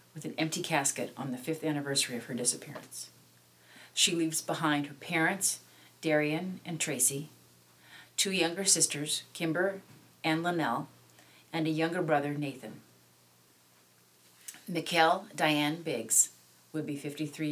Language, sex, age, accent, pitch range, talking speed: English, female, 40-59, American, 130-160 Hz, 125 wpm